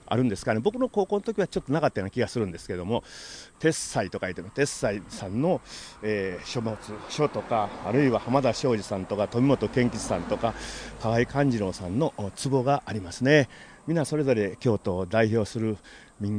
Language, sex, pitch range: Japanese, male, 105-130 Hz